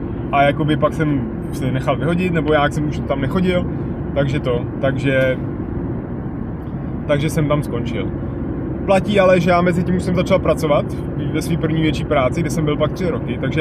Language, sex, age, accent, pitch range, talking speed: Czech, male, 20-39, native, 140-165 Hz, 185 wpm